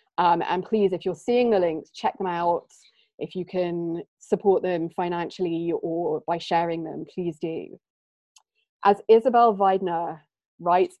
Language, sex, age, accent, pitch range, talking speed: English, female, 20-39, British, 165-200 Hz, 145 wpm